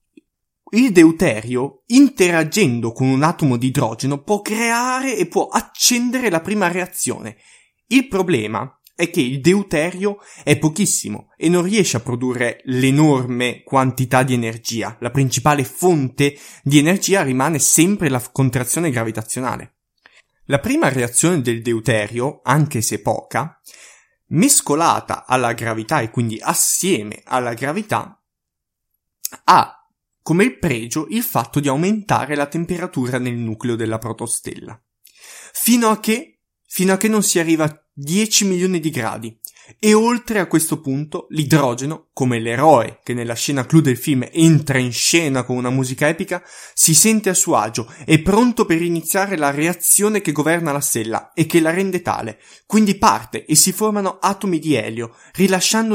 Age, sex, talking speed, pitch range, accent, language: 20-39, male, 145 wpm, 125-180 Hz, native, Italian